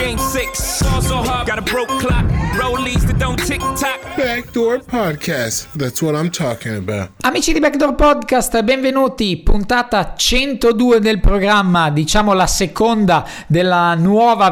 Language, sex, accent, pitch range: Italian, male, native, 165-200 Hz